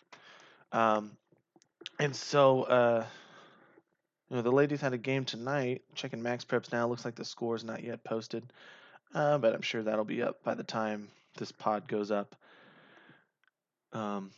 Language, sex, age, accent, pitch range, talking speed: English, male, 20-39, American, 110-130 Hz, 165 wpm